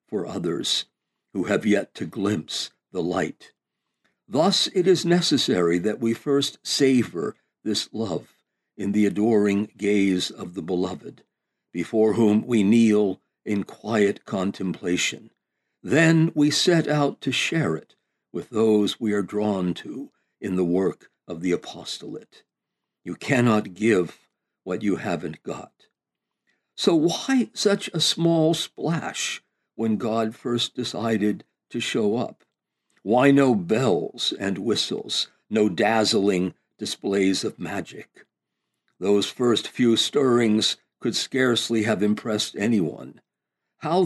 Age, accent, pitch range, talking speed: 60-79, American, 100-145 Hz, 125 wpm